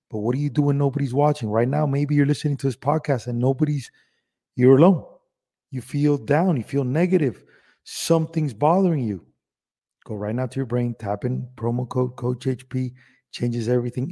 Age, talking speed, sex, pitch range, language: 30-49, 180 wpm, male, 120-145 Hz, English